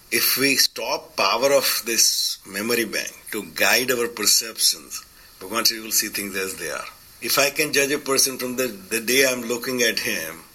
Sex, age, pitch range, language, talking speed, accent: male, 50-69, 105-130 Hz, English, 205 wpm, Indian